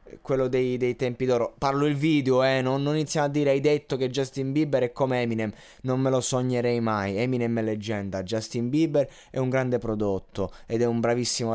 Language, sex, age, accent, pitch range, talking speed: Italian, male, 20-39, native, 100-125 Hz, 210 wpm